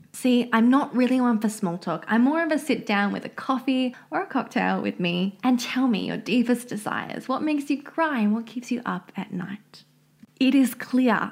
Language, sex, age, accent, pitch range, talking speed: English, female, 20-39, Australian, 215-285 Hz, 225 wpm